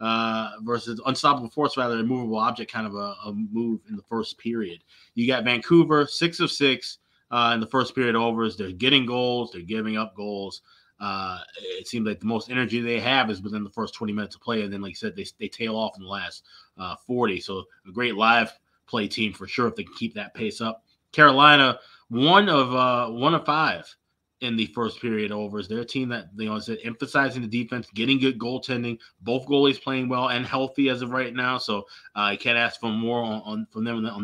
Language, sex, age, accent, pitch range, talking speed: English, male, 20-39, American, 110-130 Hz, 230 wpm